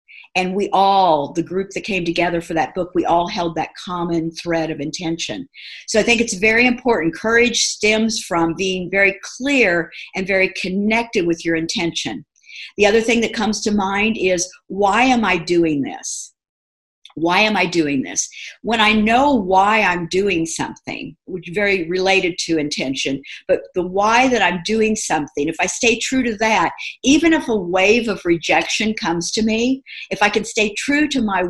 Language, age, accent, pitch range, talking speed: English, 50-69, American, 170-220 Hz, 185 wpm